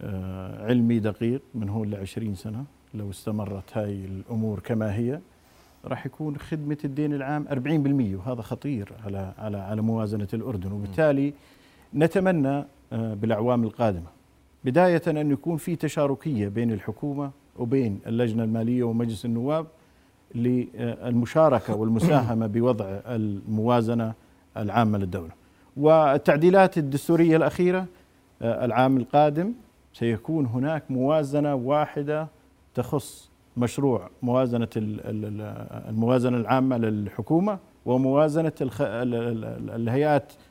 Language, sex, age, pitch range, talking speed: Arabic, male, 50-69, 115-150 Hz, 95 wpm